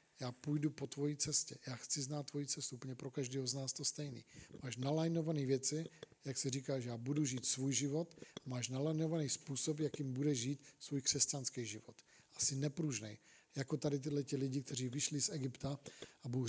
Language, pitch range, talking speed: Czech, 130-145 Hz, 185 wpm